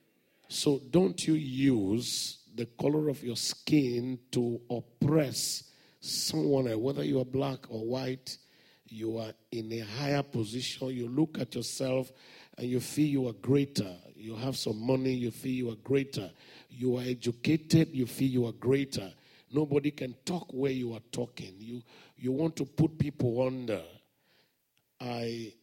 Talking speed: 155 wpm